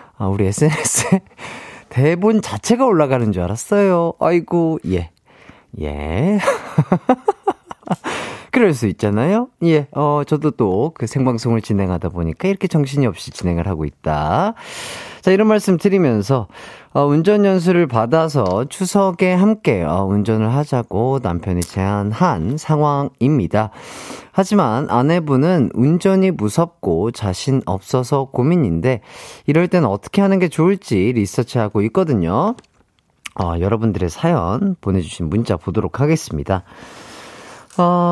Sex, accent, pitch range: male, native, 110-185 Hz